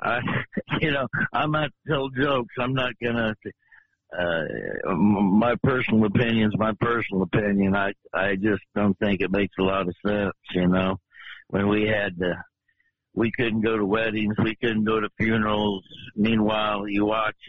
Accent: American